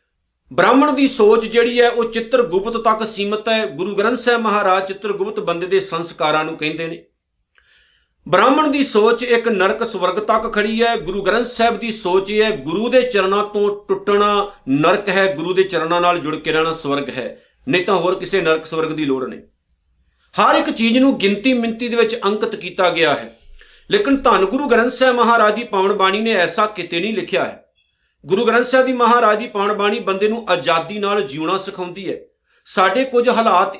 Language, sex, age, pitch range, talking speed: Punjabi, male, 50-69, 180-230 Hz, 190 wpm